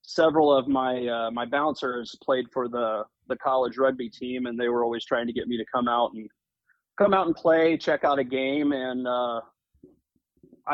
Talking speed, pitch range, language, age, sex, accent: 195 wpm, 125-145 Hz, English, 30-49, male, American